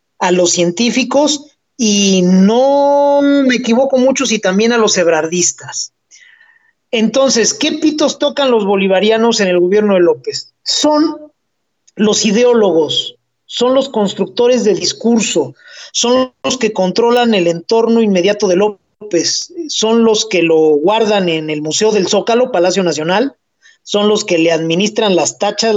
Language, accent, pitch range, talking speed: Spanish, Mexican, 180-240 Hz, 140 wpm